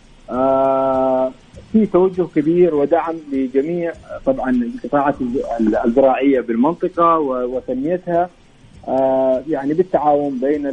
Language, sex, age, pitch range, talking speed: English, male, 40-59, 135-170 Hz, 75 wpm